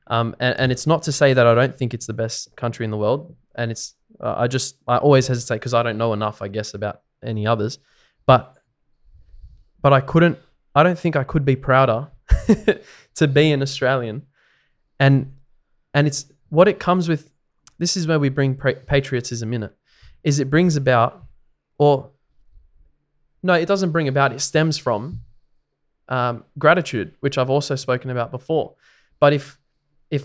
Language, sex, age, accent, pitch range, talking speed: English, male, 20-39, Australian, 120-145 Hz, 180 wpm